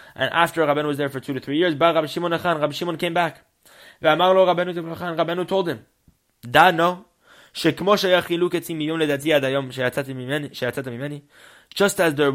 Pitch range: 105-145 Hz